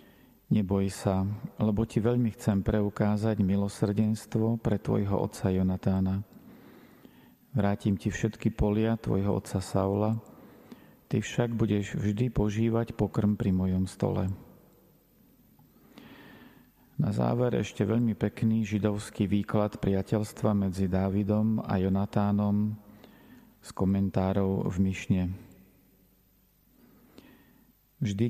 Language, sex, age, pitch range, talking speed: Slovak, male, 40-59, 95-110 Hz, 95 wpm